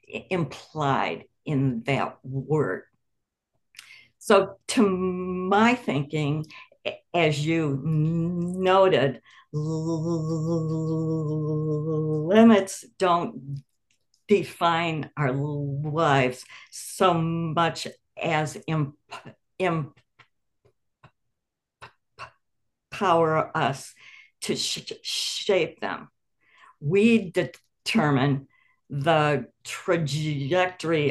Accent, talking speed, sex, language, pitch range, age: American, 55 wpm, female, English, 145-180 Hz, 60-79